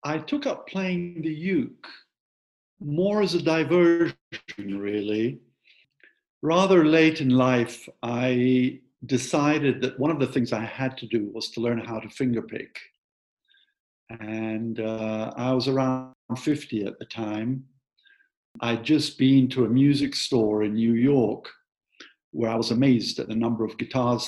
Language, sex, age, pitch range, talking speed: English, male, 50-69, 115-135 Hz, 150 wpm